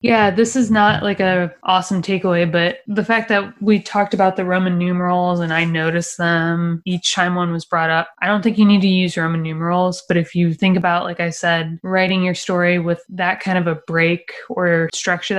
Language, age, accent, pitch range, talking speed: English, 20-39, American, 170-195 Hz, 220 wpm